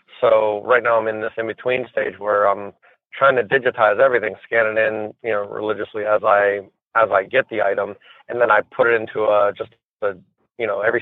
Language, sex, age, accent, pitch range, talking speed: English, male, 30-49, American, 105-115 Hz, 210 wpm